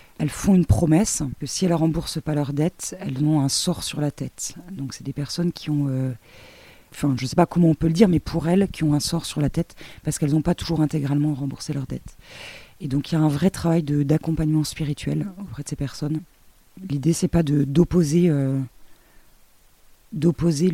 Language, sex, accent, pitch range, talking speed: French, female, French, 140-165 Hz, 225 wpm